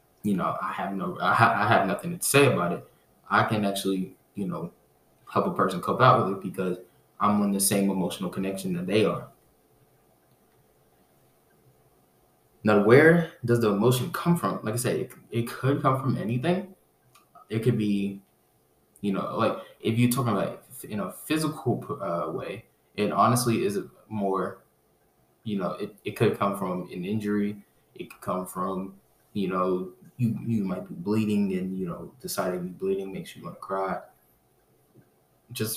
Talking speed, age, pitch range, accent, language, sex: 170 wpm, 20-39, 95-120 Hz, American, English, male